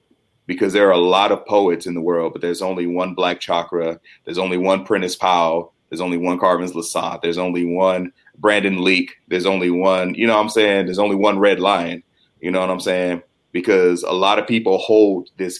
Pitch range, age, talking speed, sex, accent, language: 90-115 Hz, 30-49, 215 wpm, male, American, English